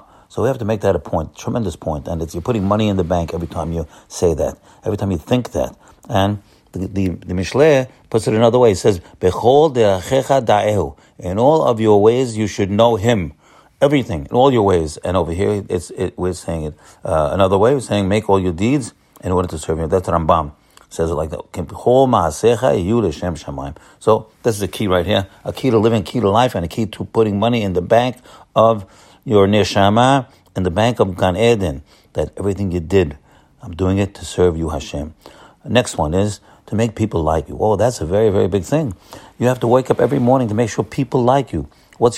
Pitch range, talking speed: 90-120 Hz, 225 wpm